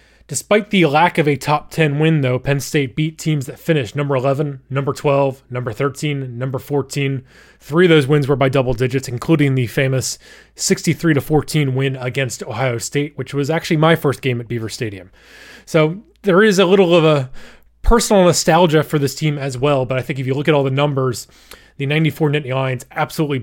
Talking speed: 195 wpm